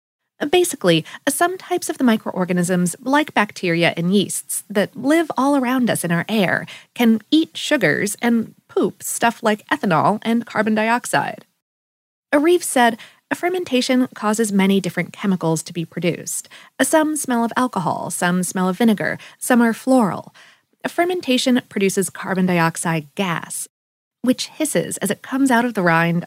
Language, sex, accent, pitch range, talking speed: English, female, American, 190-265 Hz, 150 wpm